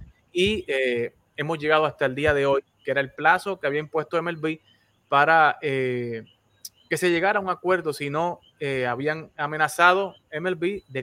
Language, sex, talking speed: Spanish, male, 170 wpm